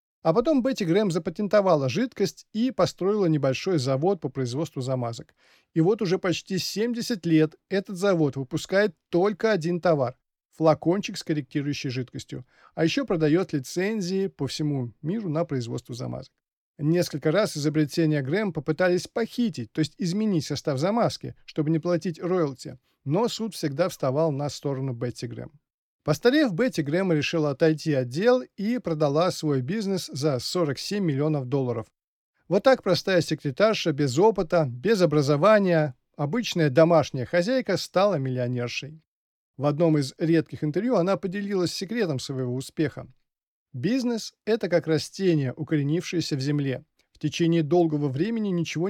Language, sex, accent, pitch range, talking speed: Russian, male, native, 145-195 Hz, 135 wpm